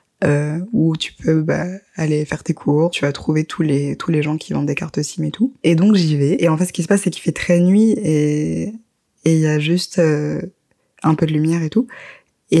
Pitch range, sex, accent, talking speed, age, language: 155-180 Hz, female, French, 255 wpm, 20-39, French